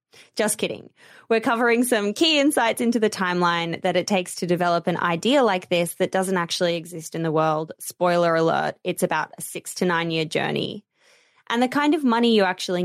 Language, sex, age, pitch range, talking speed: English, female, 20-39, 175-235 Hz, 200 wpm